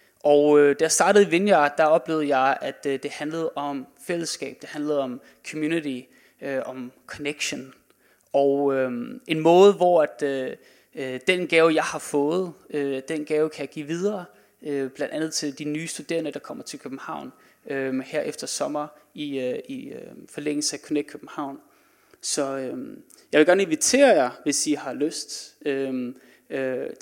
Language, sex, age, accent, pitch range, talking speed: Danish, male, 30-49, native, 145-200 Hz, 170 wpm